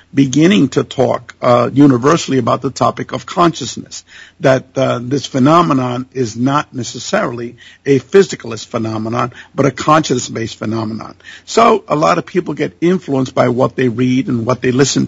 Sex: male